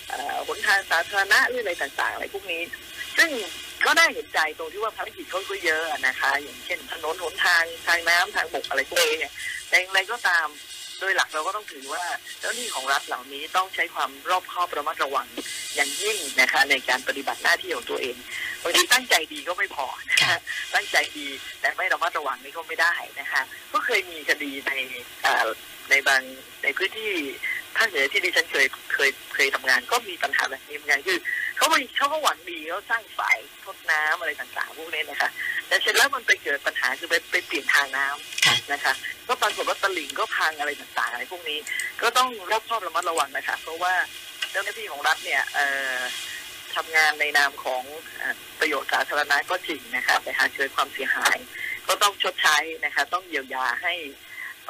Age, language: 20-39, Thai